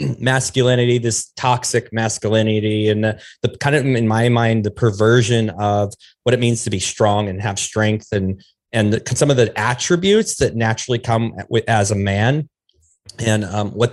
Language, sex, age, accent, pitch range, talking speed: English, male, 30-49, American, 110-130 Hz, 175 wpm